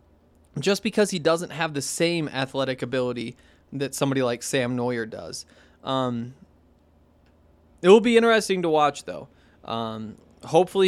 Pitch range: 125-160 Hz